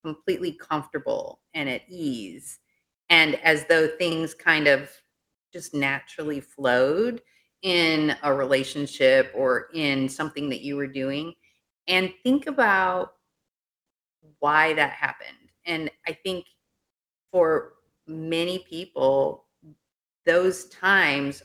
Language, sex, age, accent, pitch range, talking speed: English, female, 30-49, American, 145-185 Hz, 105 wpm